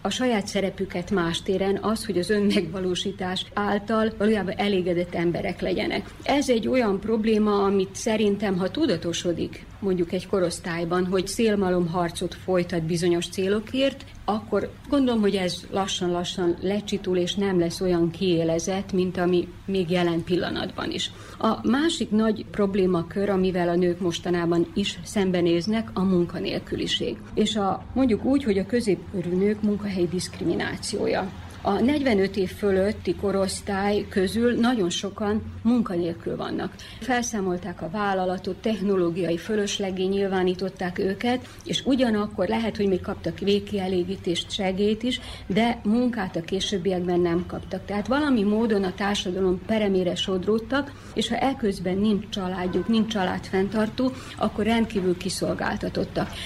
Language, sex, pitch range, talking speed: Hungarian, female, 180-215 Hz, 125 wpm